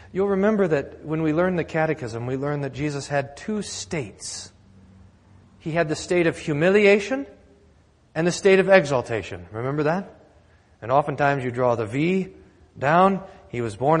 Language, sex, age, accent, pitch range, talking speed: English, male, 40-59, American, 105-175 Hz, 165 wpm